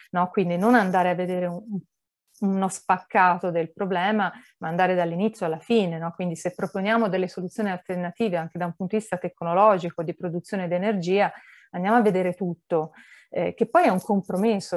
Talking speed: 180 wpm